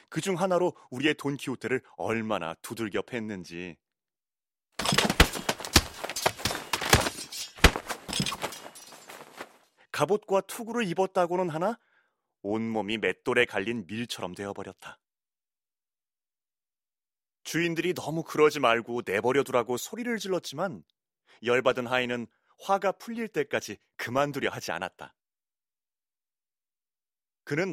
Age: 30-49